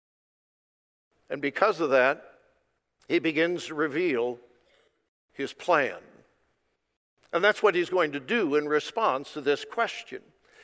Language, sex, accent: English, male, American